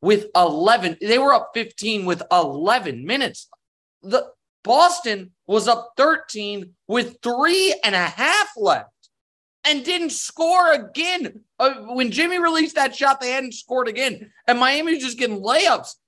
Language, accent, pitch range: English, American, 160-250 Hz